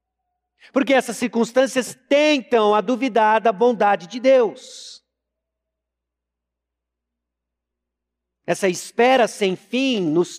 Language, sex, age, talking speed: Portuguese, male, 50-69, 85 wpm